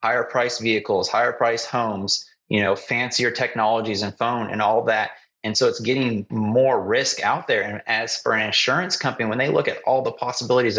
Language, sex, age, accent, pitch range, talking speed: English, male, 30-49, American, 110-140 Hz, 200 wpm